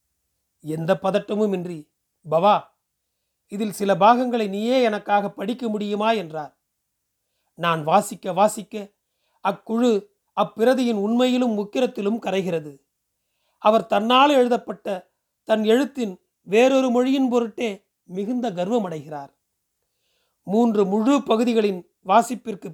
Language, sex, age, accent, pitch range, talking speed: Tamil, male, 40-59, native, 180-235 Hz, 90 wpm